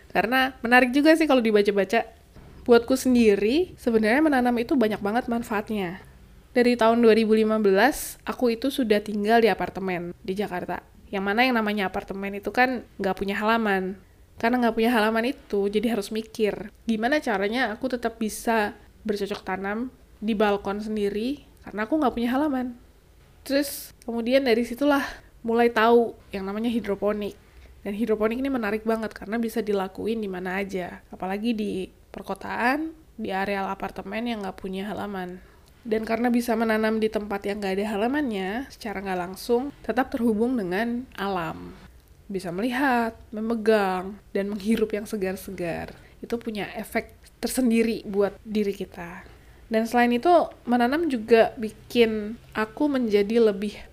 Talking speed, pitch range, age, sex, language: 140 wpm, 200-240 Hz, 20-39, female, Indonesian